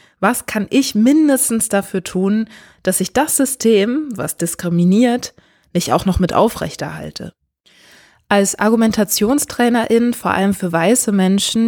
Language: German